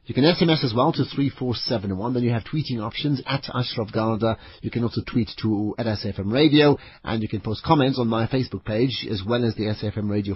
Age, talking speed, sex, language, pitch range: 40-59, 245 wpm, male, English, 110-140 Hz